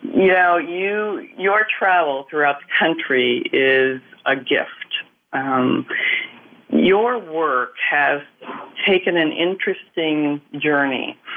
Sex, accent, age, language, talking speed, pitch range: female, American, 40-59, English, 95 wpm, 135-165 Hz